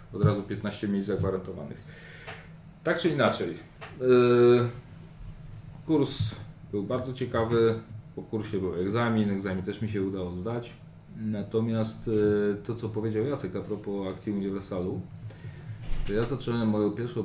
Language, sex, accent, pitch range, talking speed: Polish, male, native, 100-120 Hz, 125 wpm